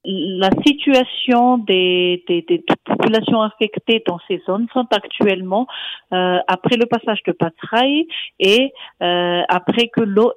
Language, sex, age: French, female, 50-69